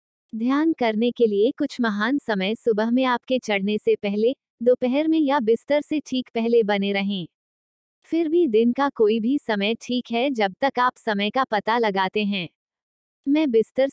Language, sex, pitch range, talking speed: Hindi, female, 210-260 Hz, 175 wpm